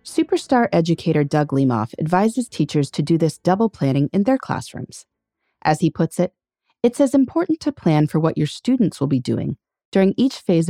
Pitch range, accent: 140-225 Hz, American